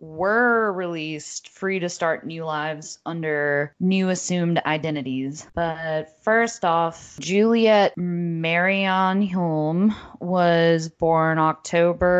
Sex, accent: female, American